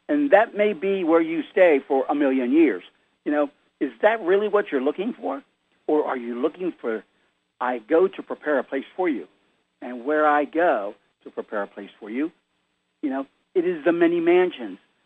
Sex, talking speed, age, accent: male, 200 wpm, 60-79, American